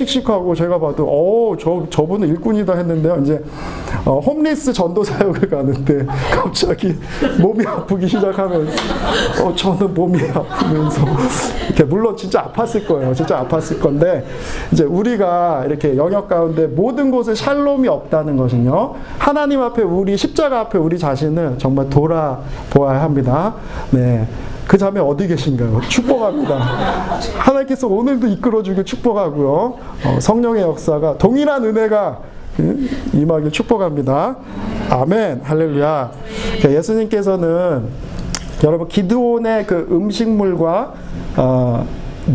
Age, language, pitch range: 40-59, Korean, 150-220 Hz